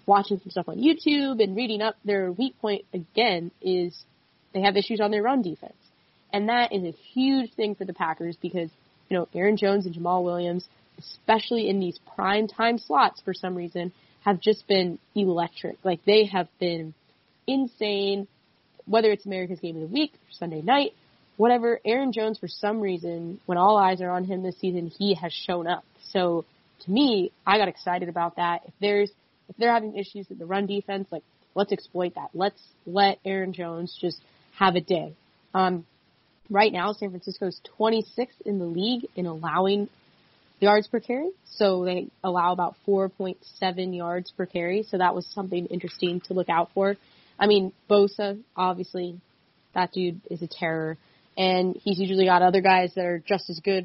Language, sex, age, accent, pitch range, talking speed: English, female, 20-39, American, 175-205 Hz, 185 wpm